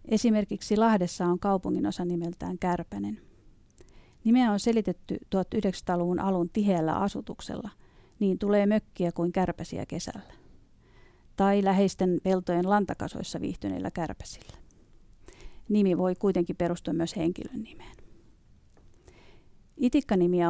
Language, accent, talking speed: Finnish, native, 95 wpm